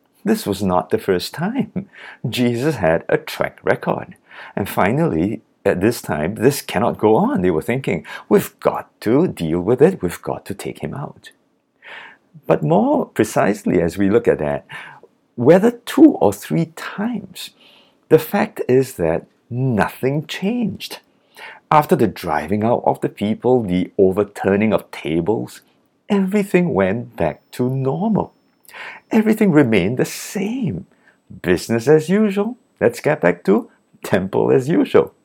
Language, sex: English, male